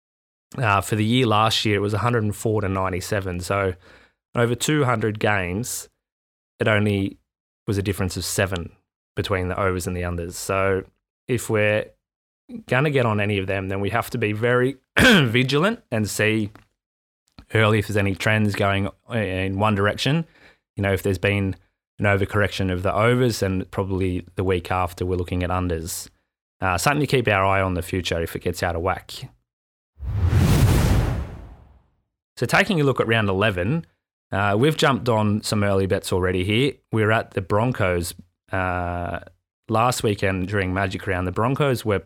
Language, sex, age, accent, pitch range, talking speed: English, male, 20-39, Australian, 95-115 Hz, 170 wpm